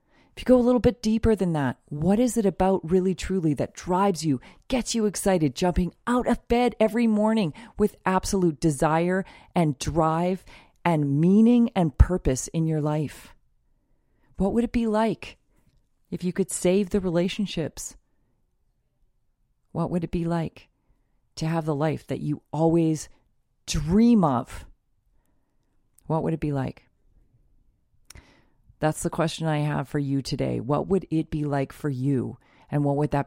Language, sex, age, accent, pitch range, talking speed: English, female, 40-59, American, 145-190 Hz, 160 wpm